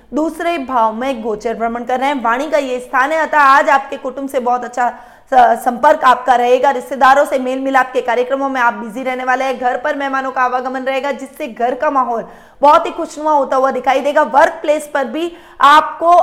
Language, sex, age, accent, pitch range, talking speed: Hindi, female, 20-39, native, 245-290 Hz, 205 wpm